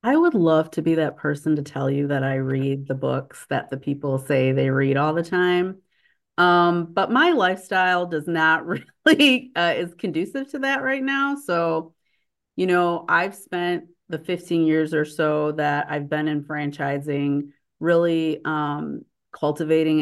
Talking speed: 170 wpm